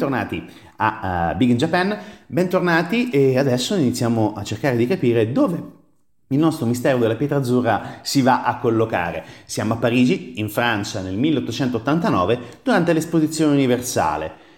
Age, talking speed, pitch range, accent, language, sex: 30-49, 140 wpm, 110-170 Hz, native, Italian, male